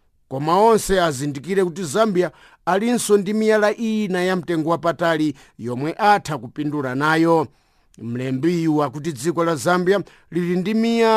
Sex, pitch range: male, 145-180 Hz